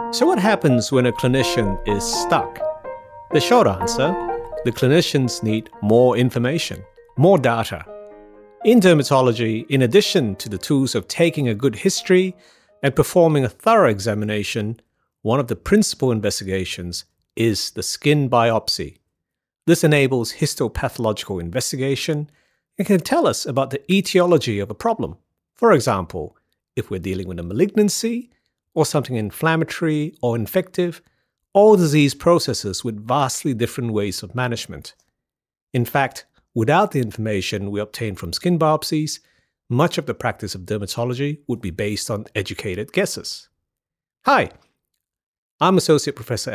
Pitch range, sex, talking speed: 110-165 Hz, male, 135 wpm